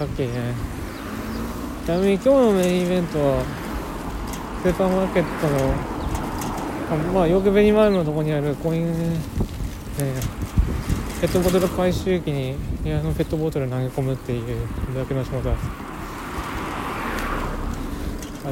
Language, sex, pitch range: Japanese, male, 125-190 Hz